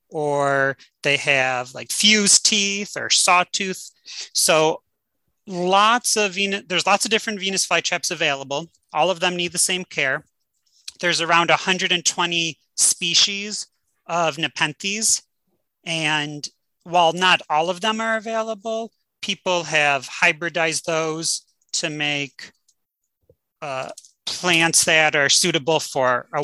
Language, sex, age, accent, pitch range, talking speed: English, male, 30-49, American, 150-185 Hz, 120 wpm